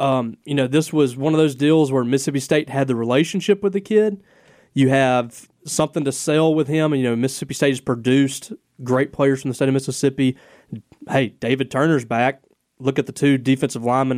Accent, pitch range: American, 130-145 Hz